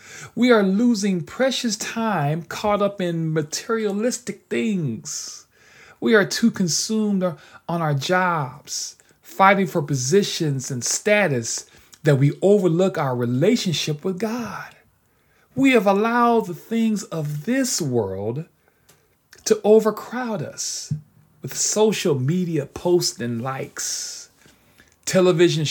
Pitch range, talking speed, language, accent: 145-205 Hz, 110 wpm, English, American